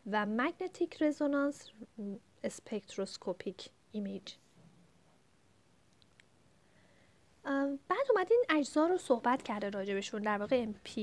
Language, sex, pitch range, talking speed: Persian, female, 210-285 Hz, 85 wpm